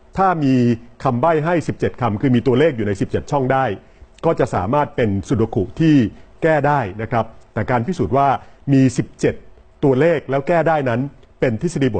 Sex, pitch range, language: male, 110-150 Hz, Thai